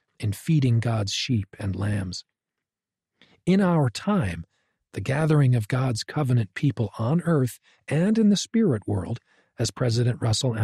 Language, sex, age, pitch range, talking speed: English, male, 40-59, 110-155 Hz, 140 wpm